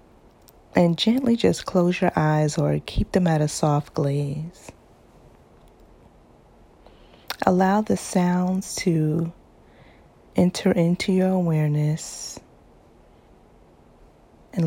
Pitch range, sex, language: 155-185 Hz, female, English